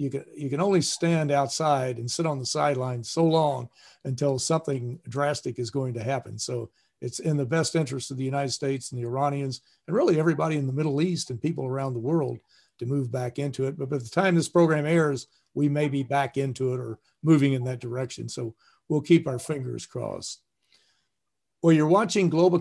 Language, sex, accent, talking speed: English, male, American, 205 wpm